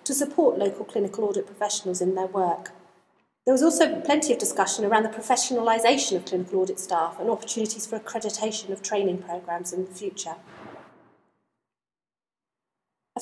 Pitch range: 195-255 Hz